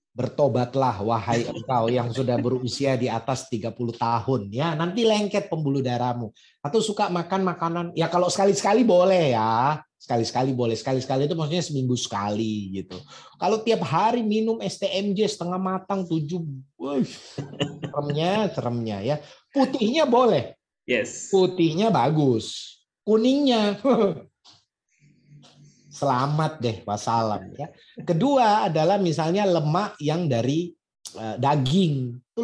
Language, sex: Indonesian, male